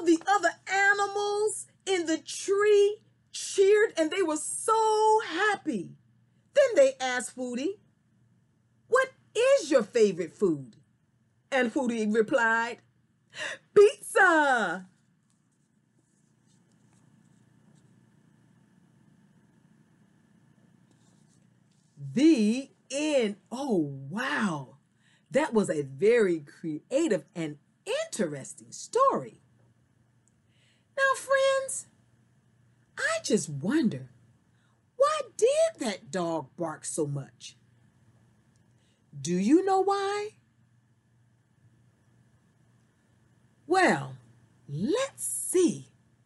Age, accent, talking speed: 40-59, American, 75 wpm